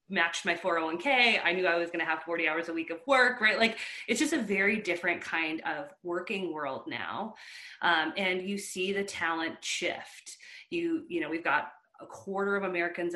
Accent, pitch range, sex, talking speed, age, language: American, 165-215 Hz, female, 195 wpm, 30-49, English